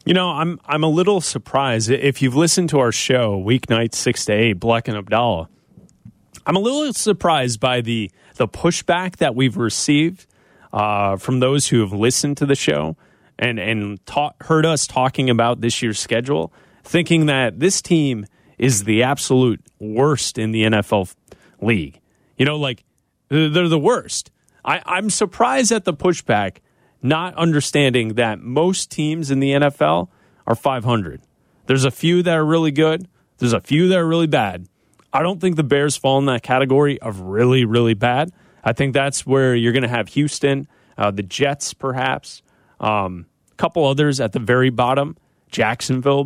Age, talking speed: 30-49, 175 wpm